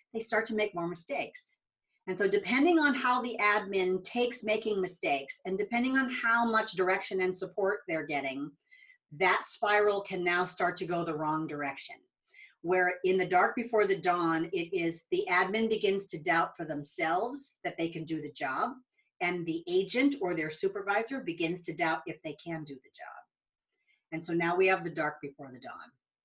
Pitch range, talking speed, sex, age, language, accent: 175-225 Hz, 190 wpm, female, 40-59, English, American